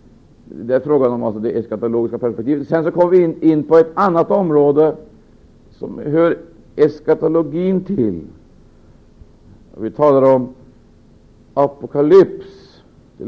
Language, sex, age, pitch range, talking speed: Swedish, male, 60-79, 115-160 Hz, 120 wpm